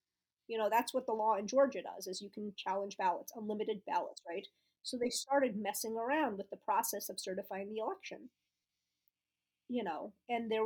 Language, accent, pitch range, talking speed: English, American, 185-240 Hz, 185 wpm